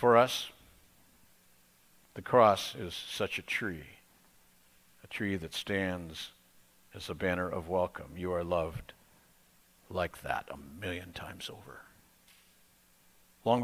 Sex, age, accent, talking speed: male, 60-79, American, 120 wpm